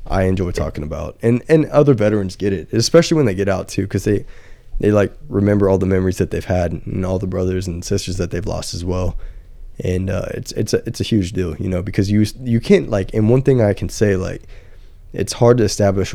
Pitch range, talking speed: 90-105 Hz, 240 wpm